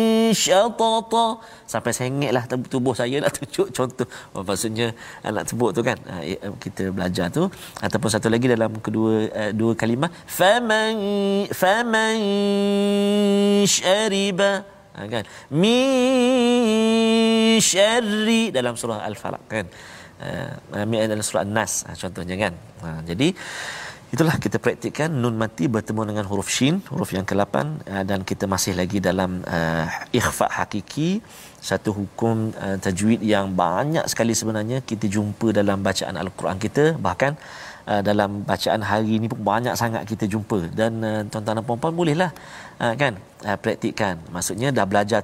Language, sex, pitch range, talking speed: Malayalam, male, 105-165 Hz, 135 wpm